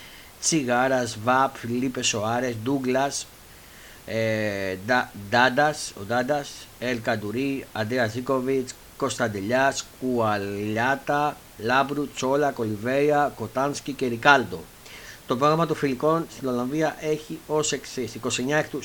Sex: male